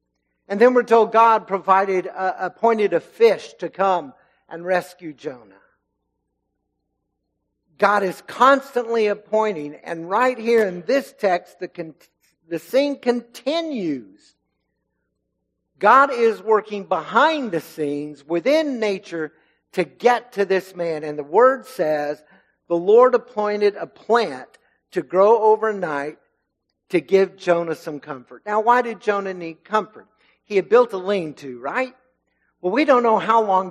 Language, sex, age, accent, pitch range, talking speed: English, male, 60-79, American, 160-225 Hz, 140 wpm